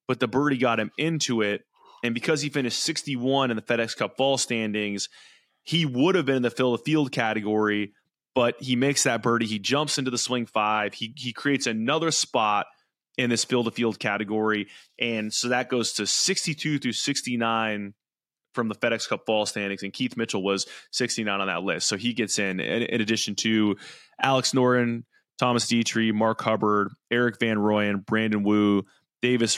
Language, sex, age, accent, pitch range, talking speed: English, male, 20-39, American, 105-125 Hz, 185 wpm